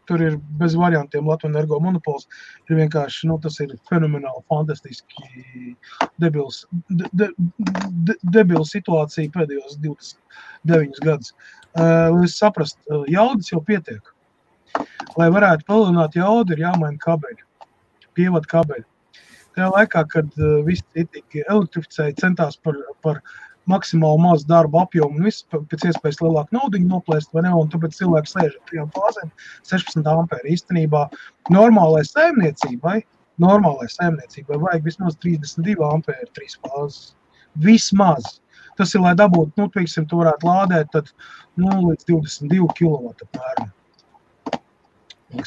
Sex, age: male, 30-49